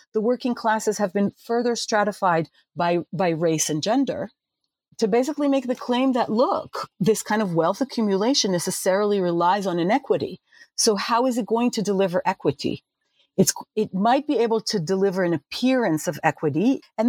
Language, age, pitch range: English, 40-59, 165-225 Hz